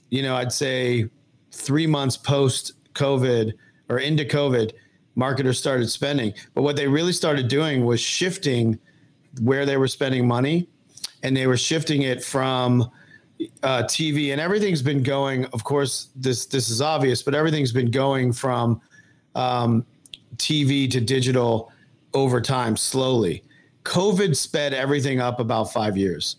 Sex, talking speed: male, 145 wpm